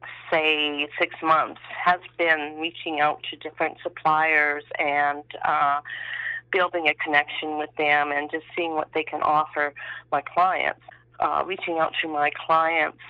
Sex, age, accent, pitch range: female, 40-59, American, 150-195 Hz